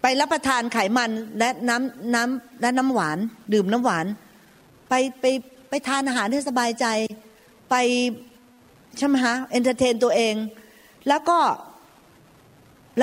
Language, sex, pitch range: Thai, female, 220-285 Hz